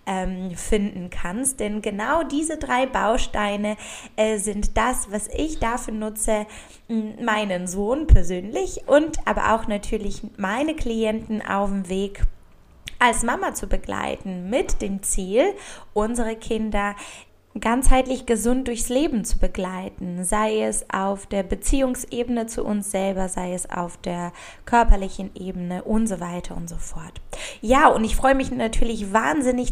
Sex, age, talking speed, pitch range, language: female, 20-39, 135 wpm, 205-255 Hz, German